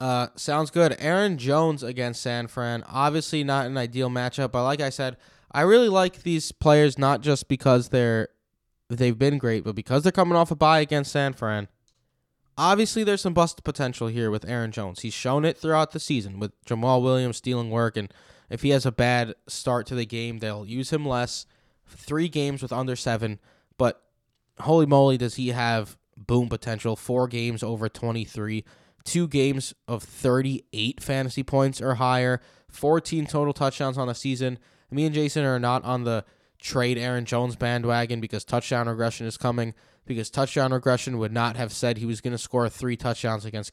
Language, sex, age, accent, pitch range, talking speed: English, male, 10-29, American, 115-140 Hz, 185 wpm